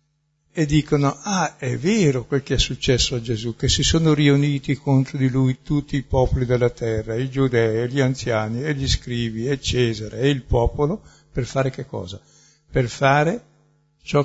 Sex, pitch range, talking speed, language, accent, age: male, 125-150 Hz, 175 wpm, Italian, native, 60-79